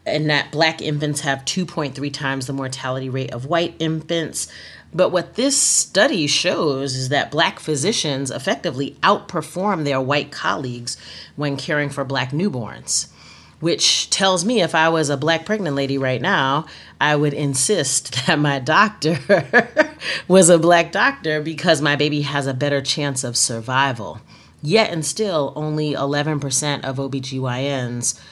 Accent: American